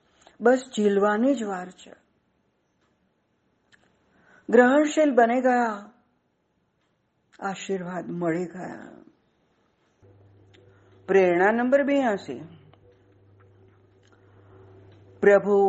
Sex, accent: female, native